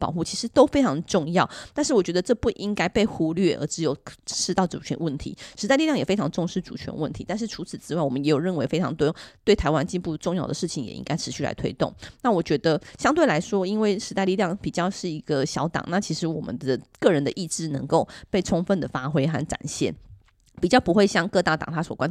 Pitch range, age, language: 150-200 Hz, 20-39, Chinese